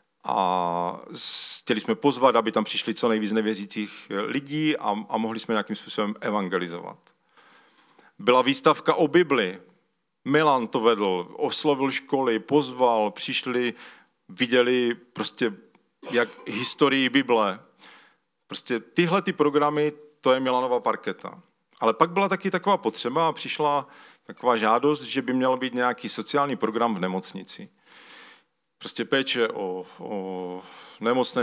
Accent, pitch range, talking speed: native, 110-150 Hz, 125 wpm